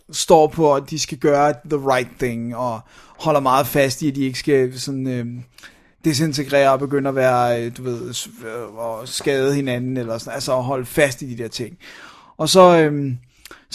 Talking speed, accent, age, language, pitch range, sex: 185 wpm, native, 30-49, Danish, 135-160 Hz, male